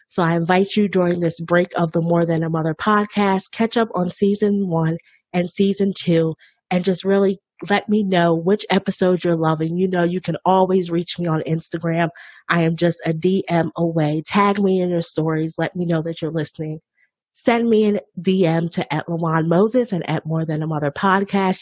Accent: American